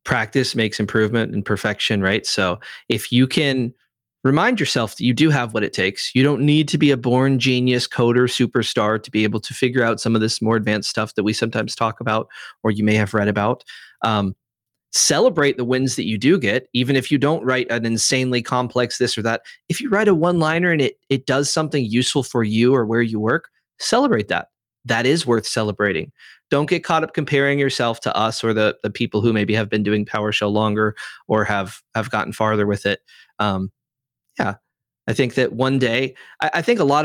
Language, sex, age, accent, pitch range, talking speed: English, male, 30-49, American, 110-135 Hz, 215 wpm